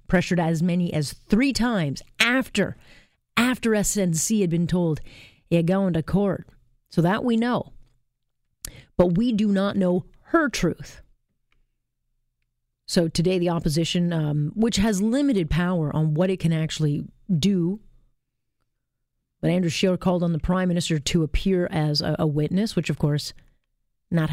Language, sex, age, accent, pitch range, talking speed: English, female, 40-59, American, 150-205 Hz, 150 wpm